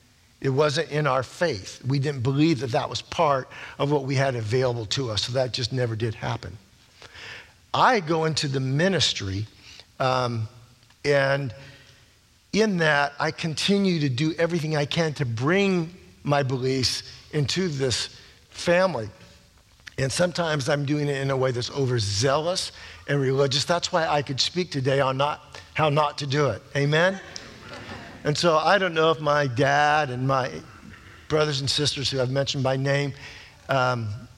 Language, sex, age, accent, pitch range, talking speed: English, male, 50-69, American, 120-150 Hz, 165 wpm